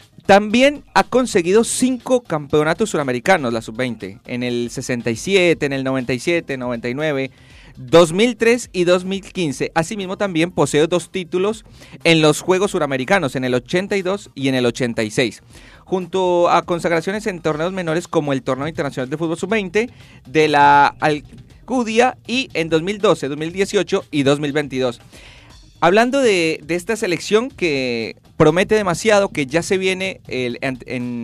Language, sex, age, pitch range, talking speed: Spanish, male, 30-49, 135-185 Hz, 135 wpm